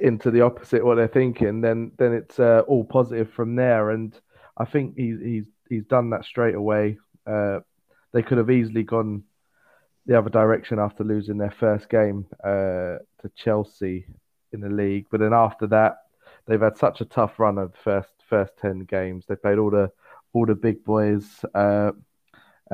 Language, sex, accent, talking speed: English, male, British, 185 wpm